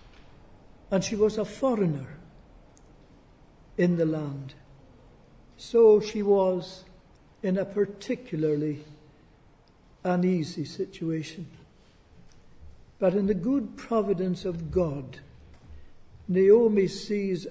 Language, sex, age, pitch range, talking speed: English, male, 60-79, 155-200 Hz, 85 wpm